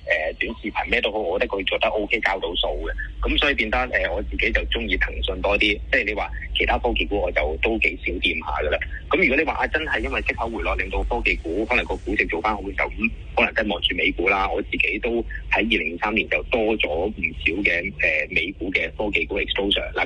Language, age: Chinese, 30-49